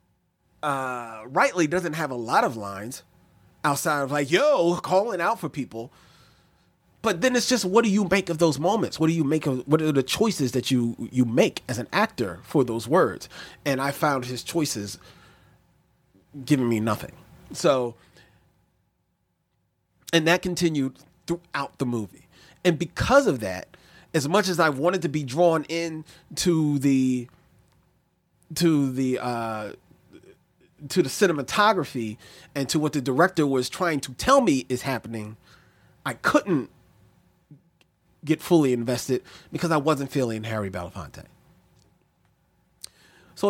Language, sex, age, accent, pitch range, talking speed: English, male, 30-49, American, 125-175 Hz, 150 wpm